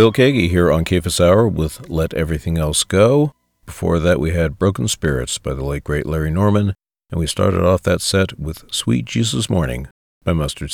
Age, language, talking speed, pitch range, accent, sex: 50-69, English, 195 wpm, 80-110 Hz, American, male